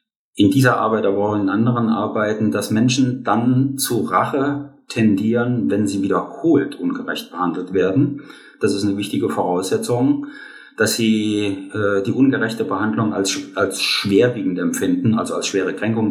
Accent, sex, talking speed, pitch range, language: German, male, 145 wpm, 100-125 Hz, German